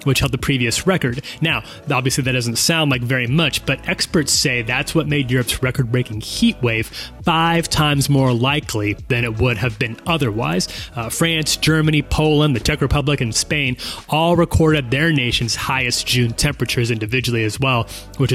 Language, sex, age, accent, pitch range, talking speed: English, male, 30-49, American, 120-150 Hz, 175 wpm